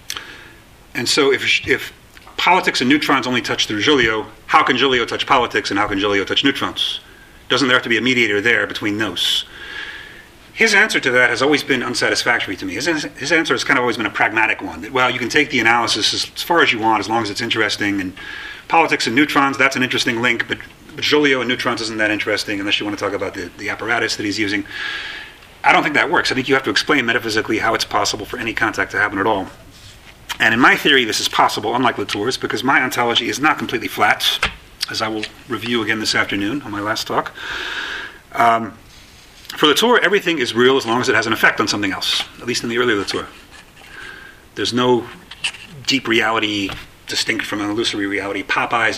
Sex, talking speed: male, 215 wpm